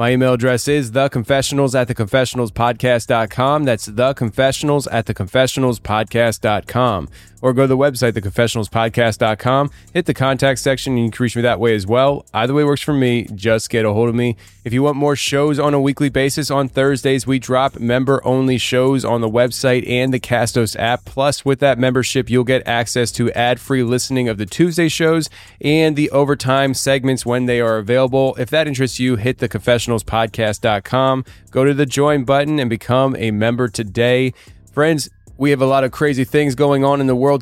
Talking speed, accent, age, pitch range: 185 wpm, American, 20-39, 120-135 Hz